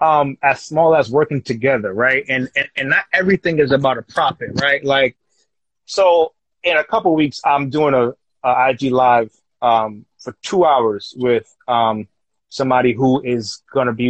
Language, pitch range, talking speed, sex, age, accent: English, 120-140 Hz, 175 wpm, male, 20-39, American